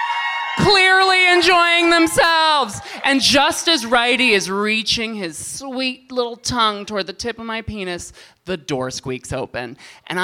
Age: 20-39